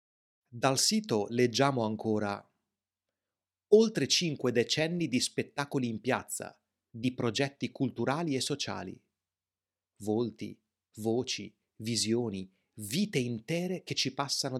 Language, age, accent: Italian, 30-49, native